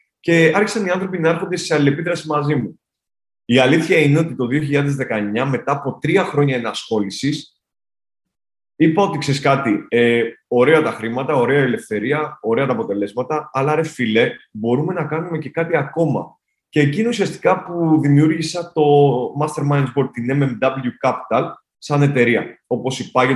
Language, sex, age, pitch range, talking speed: Greek, male, 20-39, 115-150 Hz, 150 wpm